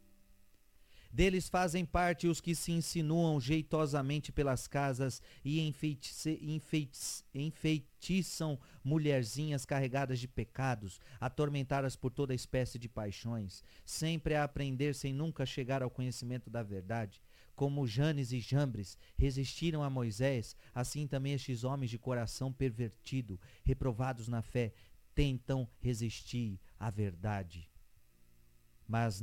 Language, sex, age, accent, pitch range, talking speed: Portuguese, male, 40-59, Brazilian, 110-140 Hz, 110 wpm